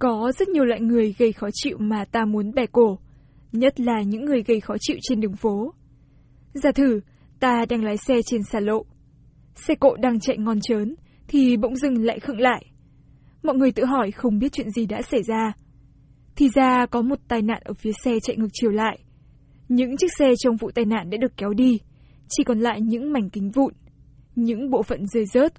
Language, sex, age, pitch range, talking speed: Vietnamese, female, 10-29, 215-255 Hz, 215 wpm